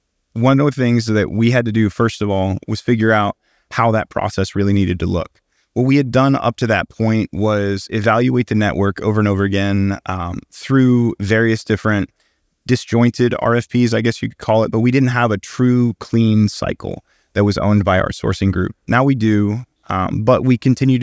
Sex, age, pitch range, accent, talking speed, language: male, 20-39, 100-120 Hz, American, 205 wpm, English